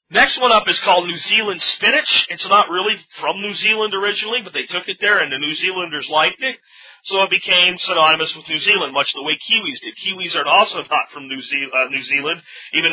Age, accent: 40-59, American